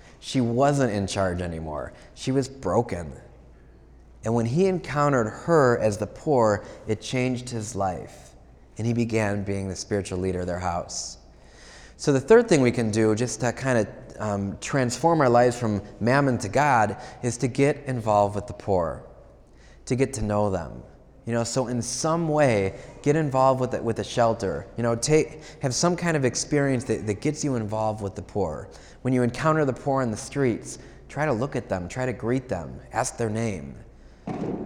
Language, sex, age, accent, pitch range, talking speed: English, male, 20-39, American, 105-130 Hz, 190 wpm